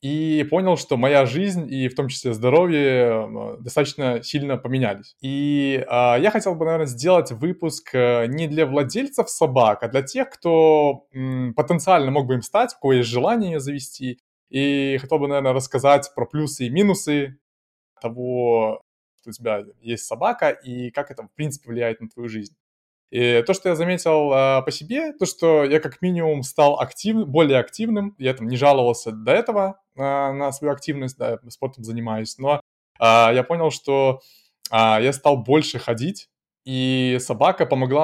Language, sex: Russian, male